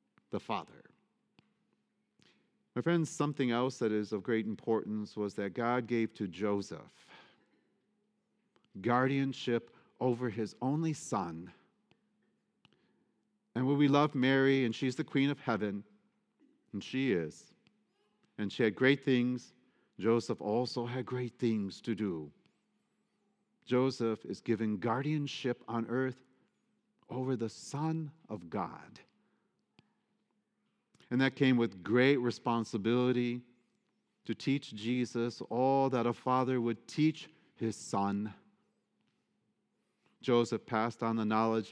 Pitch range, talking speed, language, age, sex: 110-150 Hz, 115 wpm, English, 50-69, male